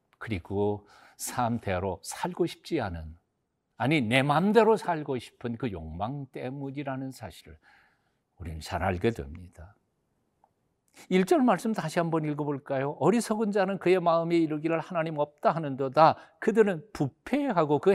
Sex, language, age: male, Korean, 50-69